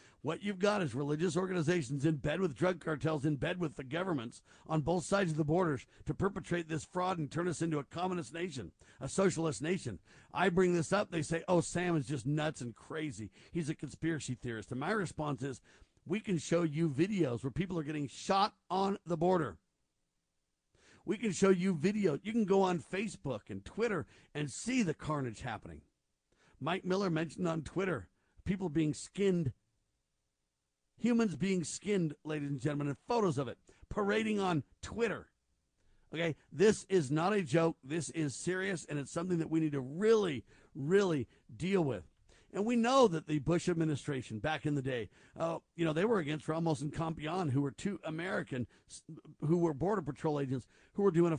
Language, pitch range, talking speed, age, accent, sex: English, 140-185 Hz, 190 wpm, 50-69, American, male